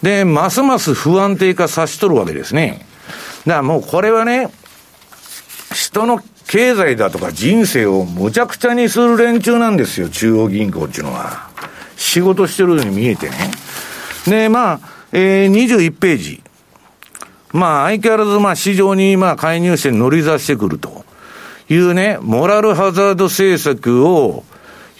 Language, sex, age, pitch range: Japanese, male, 50-69, 155-230 Hz